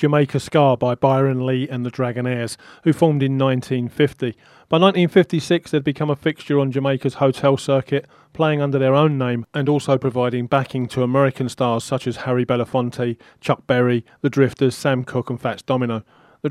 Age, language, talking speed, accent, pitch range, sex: 40-59, English, 175 wpm, British, 125-145 Hz, male